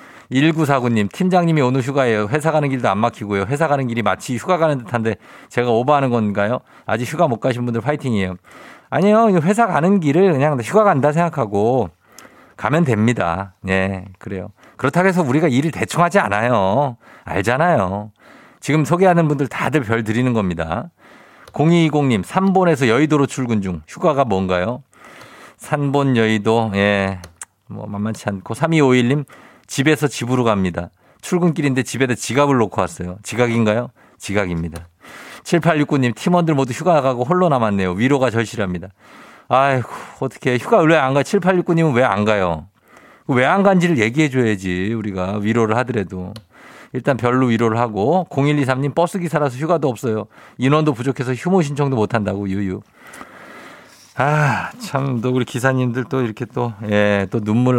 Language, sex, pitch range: Korean, male, 105-150 Hz